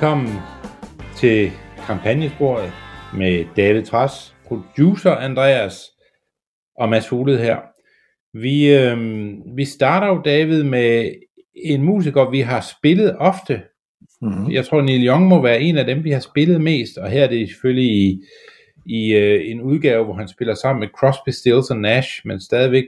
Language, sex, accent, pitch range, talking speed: Danish, male, native, 100-140 Hz, 145 wpm